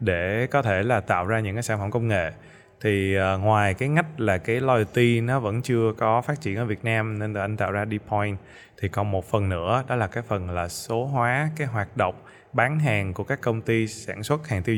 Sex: male